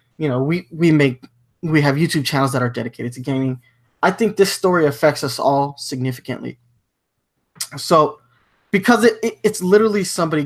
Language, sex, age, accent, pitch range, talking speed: English, male, 20-39, American, 125-155 Hz, 165 wpm